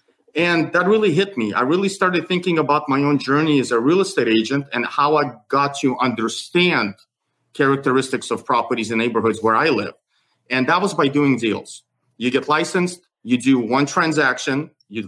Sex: male